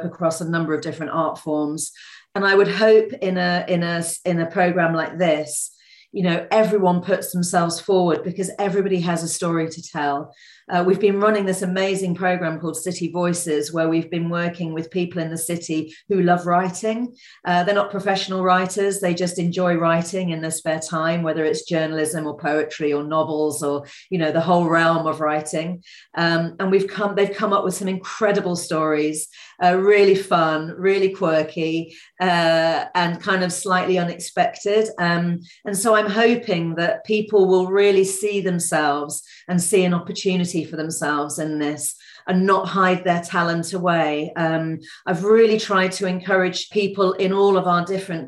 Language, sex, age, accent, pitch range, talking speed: English, female, 40-59, British, 165-190 Hz, 175 wpm